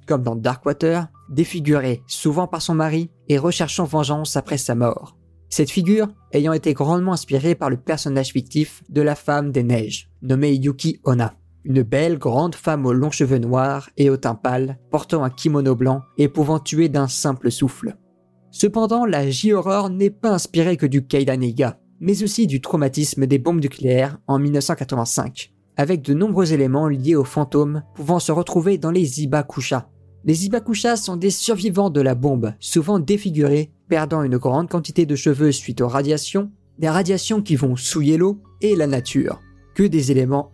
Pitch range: 130-165 Hz